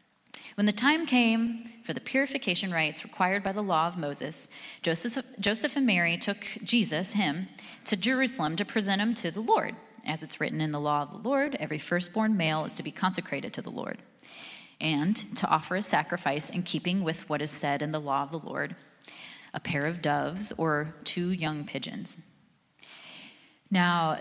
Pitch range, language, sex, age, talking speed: 165-235 Hz, English, female, 30-49, 185 wpm